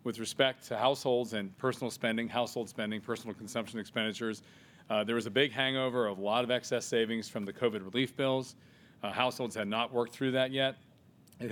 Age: 40-59